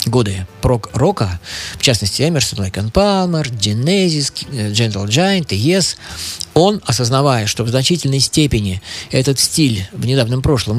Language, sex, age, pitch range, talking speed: Russian, male, 20-39, 110-150 Hz, 130 wpm